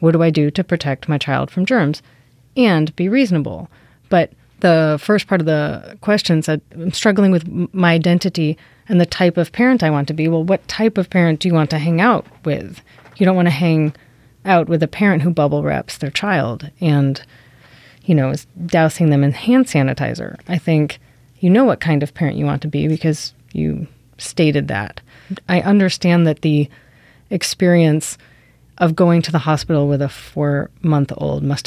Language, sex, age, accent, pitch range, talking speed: English, female, 30-49, American, 145-175 Hz, 190 wpm